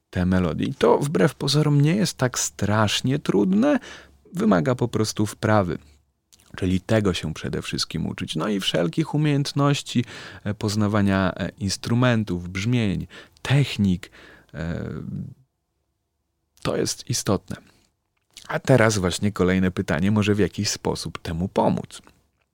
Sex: male